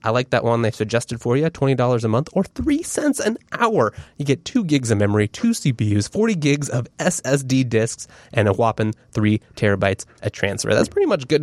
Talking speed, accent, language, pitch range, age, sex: 205 wpm, American, English, 110-165 Hz, 20-39, male